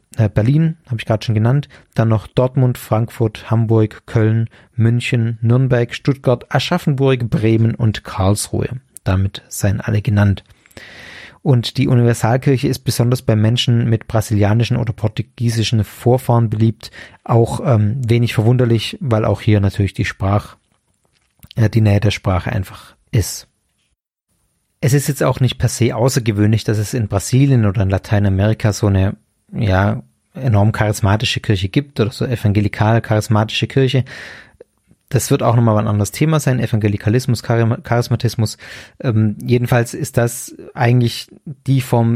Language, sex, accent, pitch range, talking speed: German, male, German, 110-130 Hz, 140 wpm